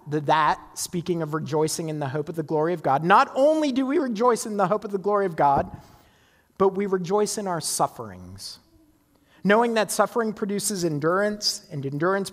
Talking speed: 190 wpm